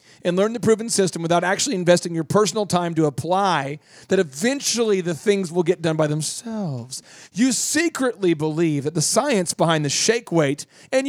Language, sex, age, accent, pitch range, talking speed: English, male, 40-59, American, 155-220 Hz, 180 wpm